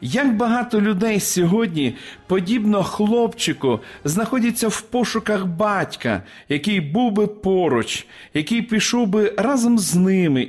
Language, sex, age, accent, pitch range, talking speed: Ukrainian, male, 40-59, native, 165-220 Hz, 115 wpm